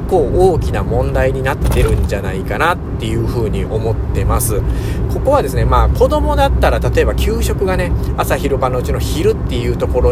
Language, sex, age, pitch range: Japanese, male, 40-59, 100-140 Hz